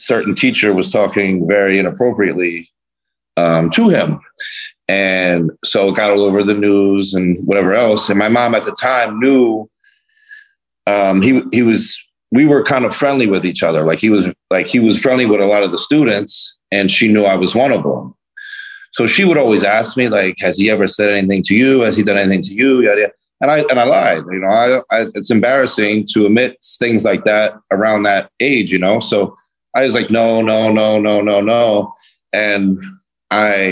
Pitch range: 95-115 Hz